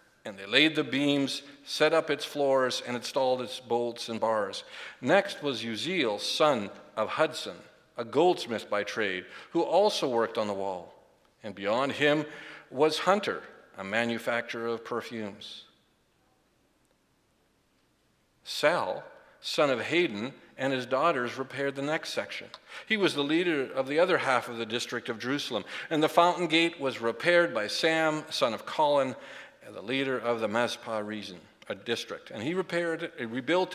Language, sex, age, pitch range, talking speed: English, male, 50-69, 120-165 Hz, 155 wpm